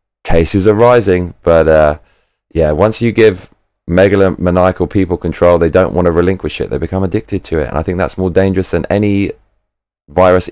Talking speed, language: 185 wpm, English